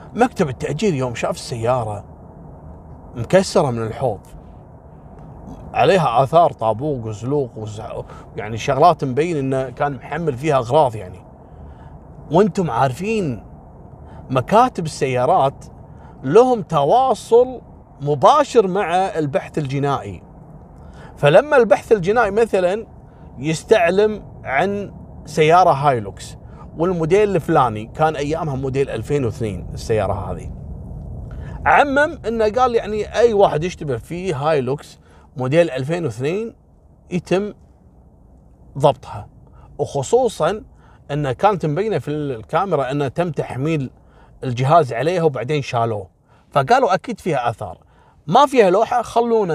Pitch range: 115-180 Hz